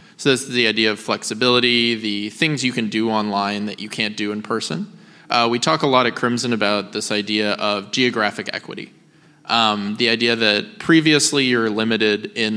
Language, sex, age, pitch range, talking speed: English, male, 20-39, 105-125 Hz, 190 wpm